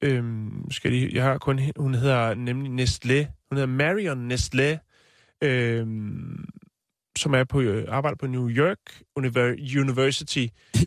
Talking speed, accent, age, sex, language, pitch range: 140 wpm, native, 30-49, male, Danish, 125-155 Hz